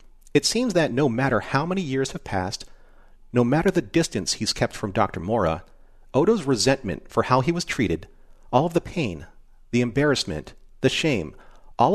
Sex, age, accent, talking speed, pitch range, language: male, 40-59, American, 175 wpm, 100-145 Hz, English